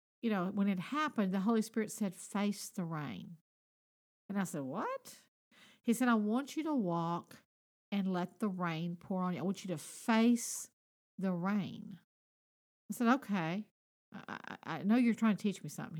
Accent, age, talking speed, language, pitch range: American, 50-69, 185 wpm, English, 190-240 Hz